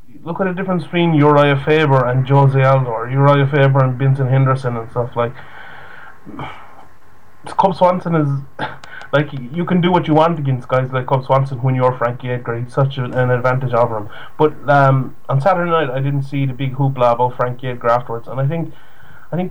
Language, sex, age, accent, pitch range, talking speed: English, male, 30-49, Irish, 125-150 Hz, 195 wpm